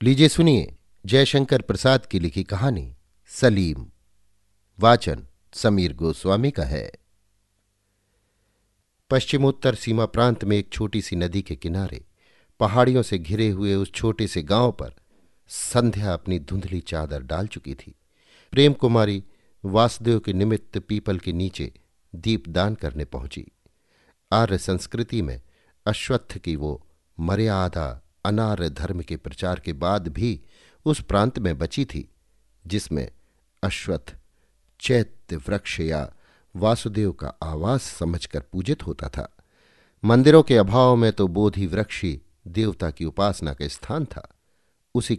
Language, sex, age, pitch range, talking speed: Hindi, male, 50-69, 85-110 Hz, 125 wpm